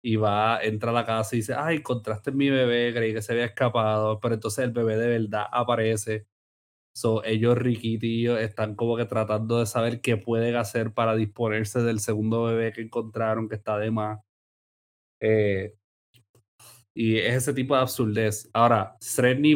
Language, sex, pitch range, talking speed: Spanish, male, 105-120 Hz, 170 wpm